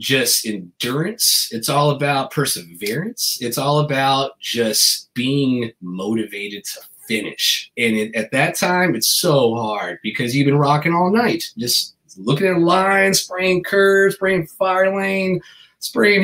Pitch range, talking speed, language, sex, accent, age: 140-195 Hz, 135 wpm, English, male, American, 30-49